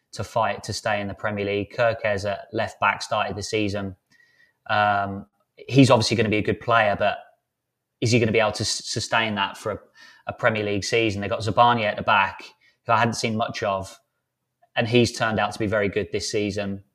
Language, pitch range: English, 105-120 Hz